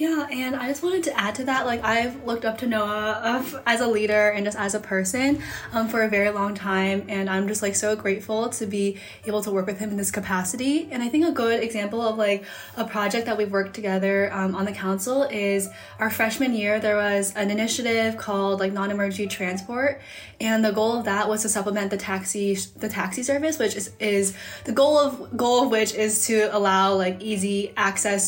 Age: 10-29